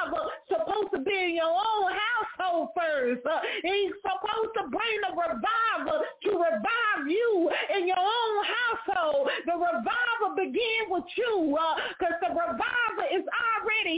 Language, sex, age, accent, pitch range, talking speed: English, female, 30-49, American, 300-375 Hz, 140 wpm